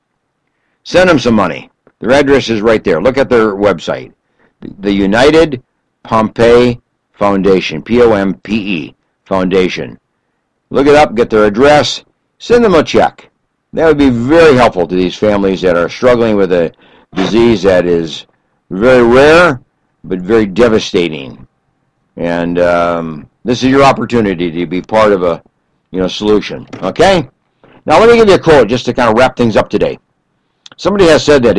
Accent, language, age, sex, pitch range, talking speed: American, English, 60-79, male, 100-130 Hz, 160 wpm